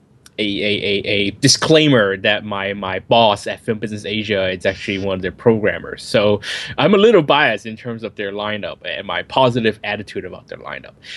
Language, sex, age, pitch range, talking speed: English, male, 20-39, 105-135 Hz, 195 wpm